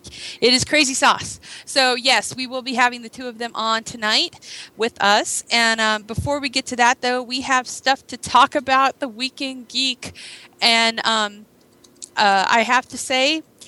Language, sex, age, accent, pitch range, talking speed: English, female, 30-49, American, 195-245 Hz, 185 wpm